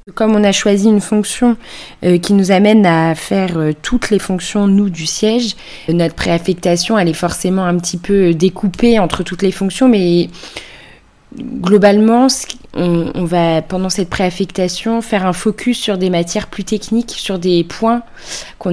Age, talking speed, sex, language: 20-39, 165 wpm, female, French